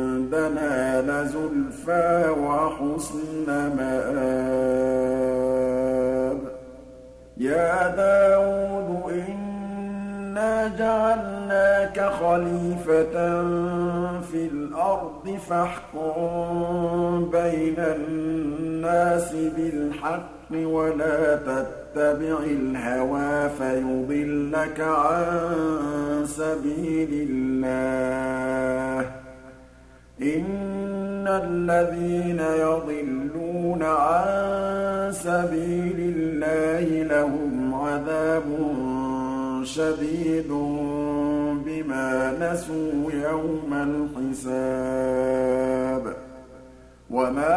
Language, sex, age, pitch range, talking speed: Arabic, male, 50-69, 140-175 Hz, 45 wpm